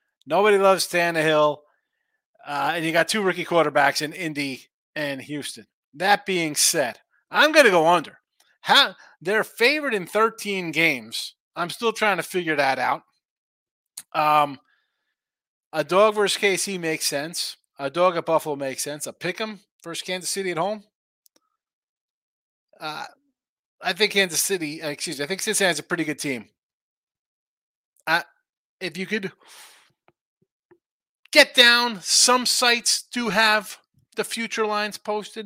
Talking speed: 140 wpm